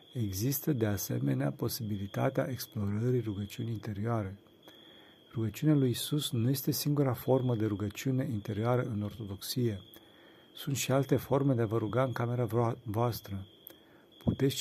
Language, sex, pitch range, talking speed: Romanian, male, 105-130 Hz, 125 wpm